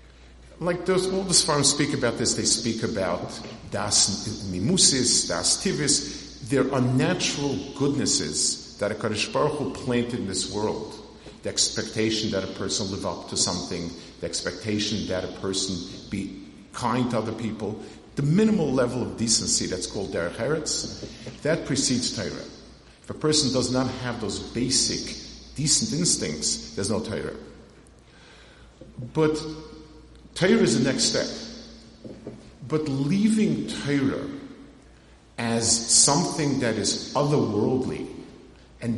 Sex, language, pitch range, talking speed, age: male, English, 105-140 Hz, 130 wpm, 50-69